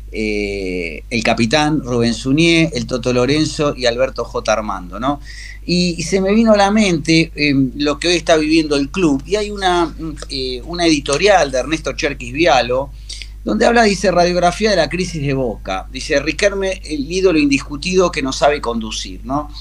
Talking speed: 180 wpm